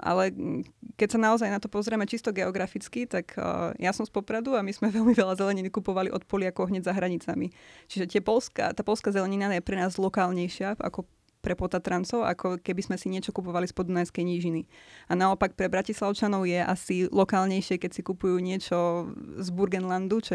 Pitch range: 180-210 Hz